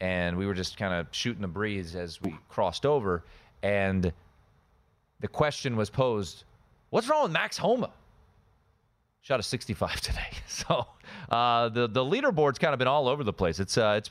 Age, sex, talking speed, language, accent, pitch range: 30-49, male, 180 wpm, English, American, 95-130 Hz